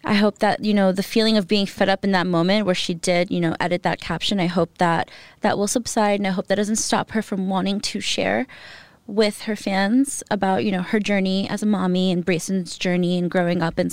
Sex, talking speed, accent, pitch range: female, 245 wpm, American, 175-215 Hz